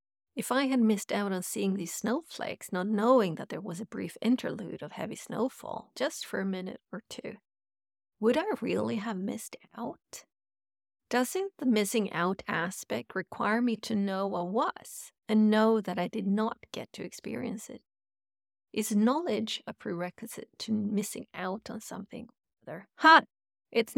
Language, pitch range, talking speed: English, 195-250 Hz, 160 wpm